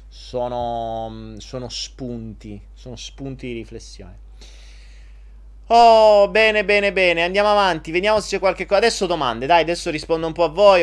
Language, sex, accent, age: Italian, male, native, 30-49